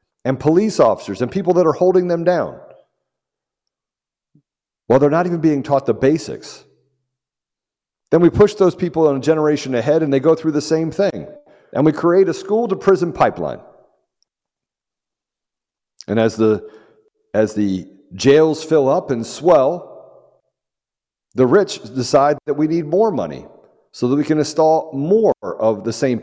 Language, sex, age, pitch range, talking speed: English, male, 50-69, 135-190 Hz, 155 wpm